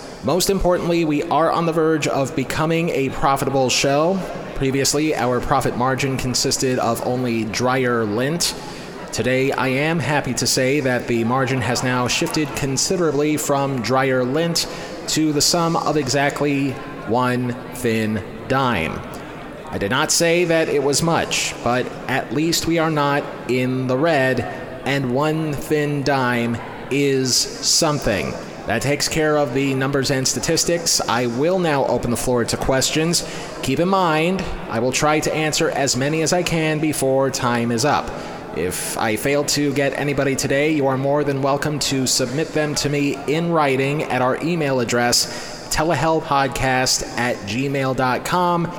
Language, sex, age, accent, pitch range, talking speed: English, male, 30-49, American, 130-155 Hz, 155 wpm